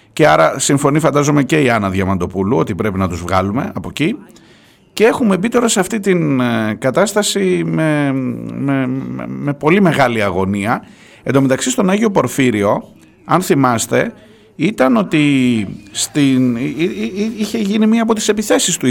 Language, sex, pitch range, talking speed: Greek, male, 125-195 Hz, 145 wpm